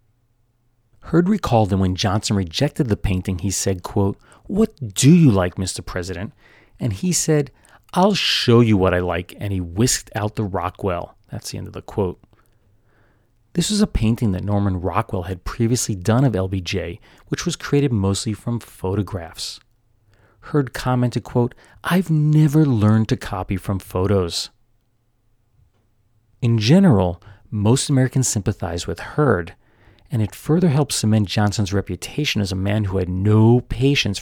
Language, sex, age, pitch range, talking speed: English, male, 30-49, 100-125 Hz, 155 wpm